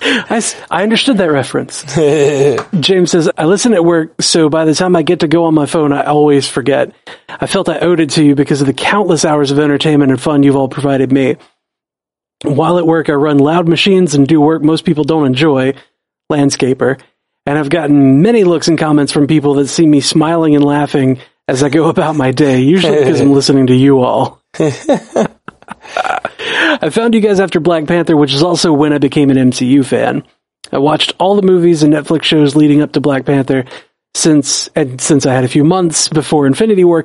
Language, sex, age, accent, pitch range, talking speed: English, male, 40-59, American, 140-170 Hz, 205 wpm